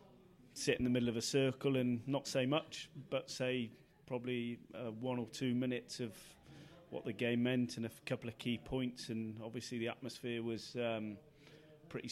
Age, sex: 30-49, male